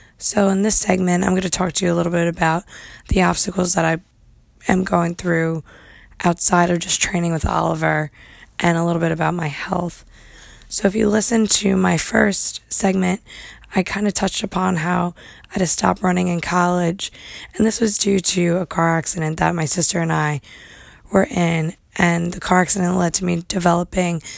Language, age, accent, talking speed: English, 20-39, American, 190 wpm